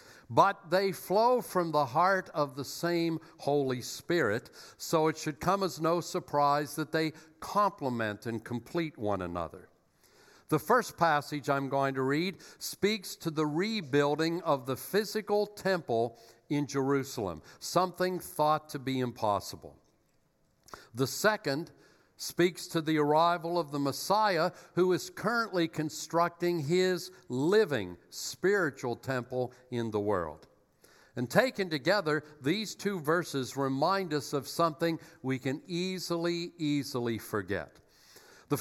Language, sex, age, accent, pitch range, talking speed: English, male, 60-79, American, 135-175 Hz, 130 wpm